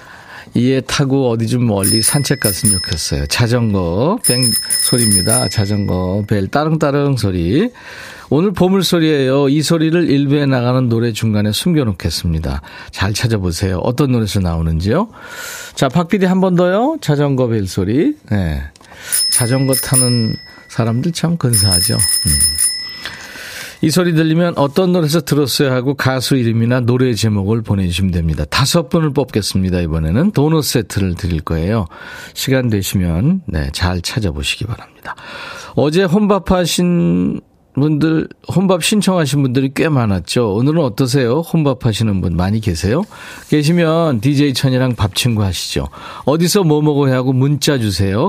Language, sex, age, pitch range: Korean, male, 40-59, 100-150 Hz